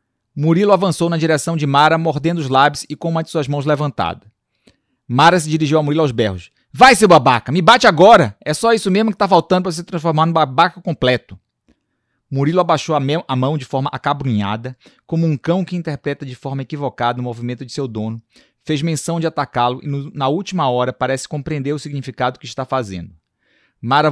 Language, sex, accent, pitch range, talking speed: Portuguese, male, Brazilian, 135-170 Hz, 195 wpm